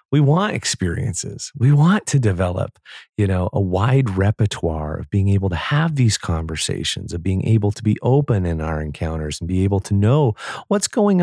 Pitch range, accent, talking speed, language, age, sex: 90-145 Hz, American, 185 wpm, English, 30-49, male